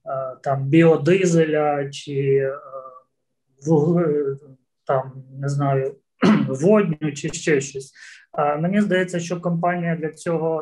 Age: 20-39